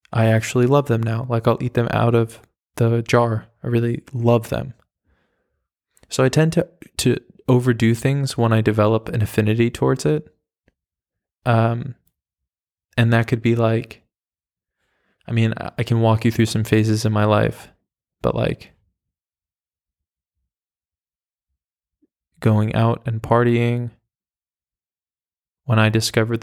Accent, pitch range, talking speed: American, 110-120 Hz, 130 wpm